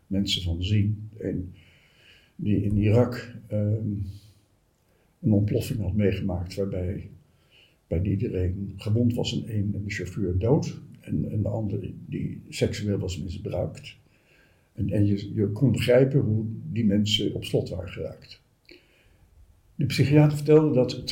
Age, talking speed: 60-79, 130 wpm